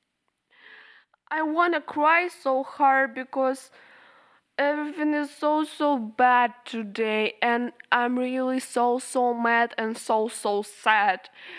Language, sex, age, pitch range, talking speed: English, female, 10-29, 245-315 Hz, 115 wpm